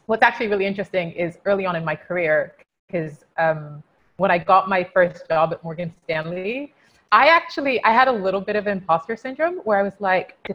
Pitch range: 175-230 Hz